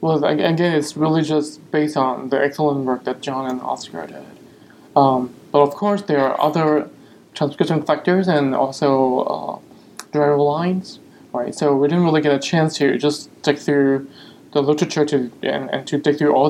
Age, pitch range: 20-39, 140-155 Hz